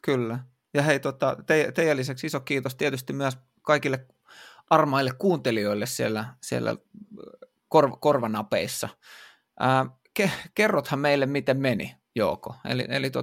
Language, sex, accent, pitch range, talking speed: Finnish, male, native, 115-135 Hz, 100 wpm